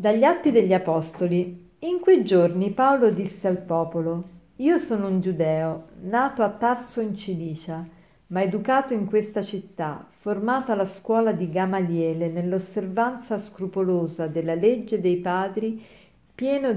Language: Italian